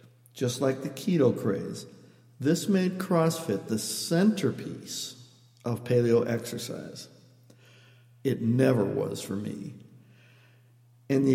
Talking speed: 105 wpm